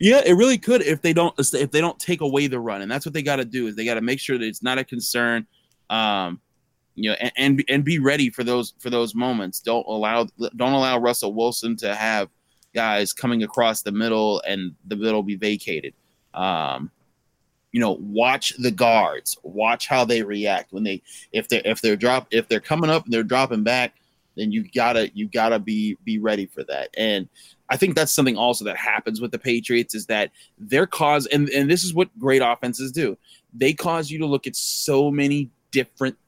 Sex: male